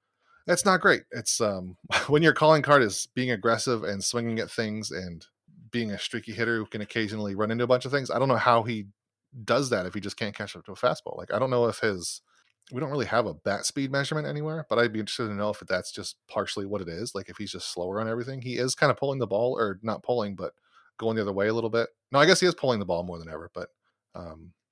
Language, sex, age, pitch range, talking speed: English, male, 30-49, 95-120 Hz, 270 wpm